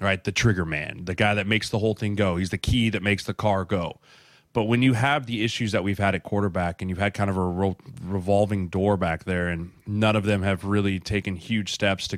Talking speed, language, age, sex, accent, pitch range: 250 wpm, English, 20-39, male, American, 95-110 Hz